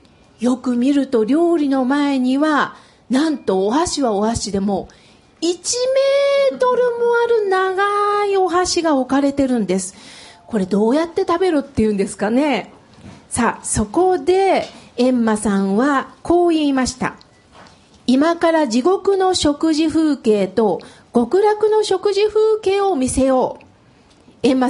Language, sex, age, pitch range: Japanese, female, 40-59, 245-350 Hz